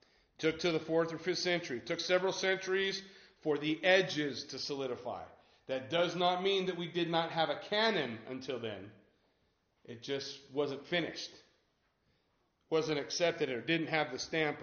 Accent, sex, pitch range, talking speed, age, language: American, male, 145-185 Hz, 170 wpm, 40-59, English